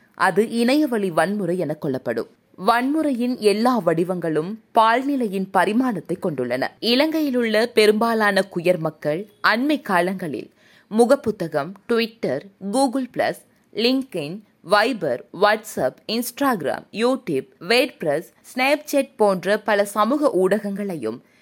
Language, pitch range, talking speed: Tamil, 185-255 Hz, 90 wpm